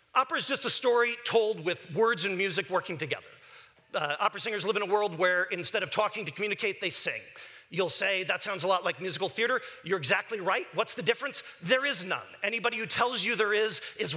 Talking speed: 220 wpm